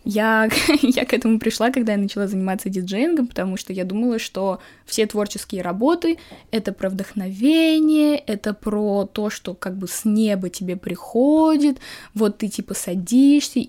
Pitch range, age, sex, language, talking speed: 190-240 Hz, 20-39, female, Russian, 160 wpm